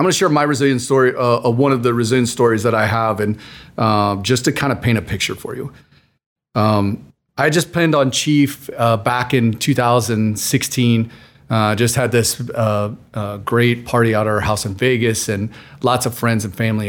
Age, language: 40-59, English